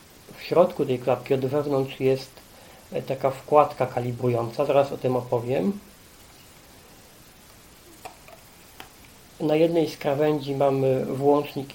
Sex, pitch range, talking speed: male, 130-155 Hz, 100 wpm